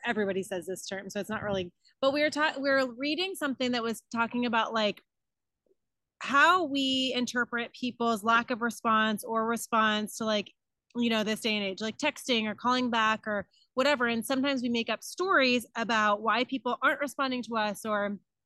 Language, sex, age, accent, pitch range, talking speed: English, female, 20-39, American, 225-265 Hz, 190 wpm